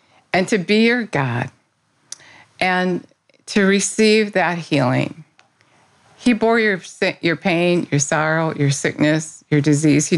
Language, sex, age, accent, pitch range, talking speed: English, female, 50-69, American, 150-180 Hz, 130 wpm